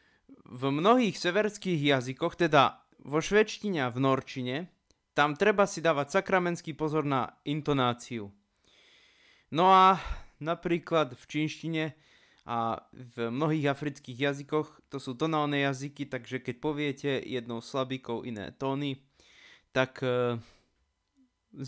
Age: 20-39